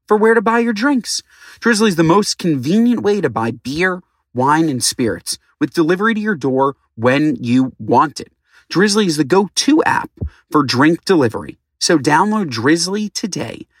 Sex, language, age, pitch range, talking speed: male, English, 30-49, 125-170 Hz, 170 wpm